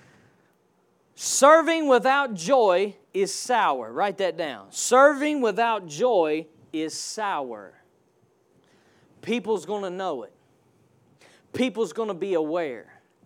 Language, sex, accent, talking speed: English, male, American, 105 wpm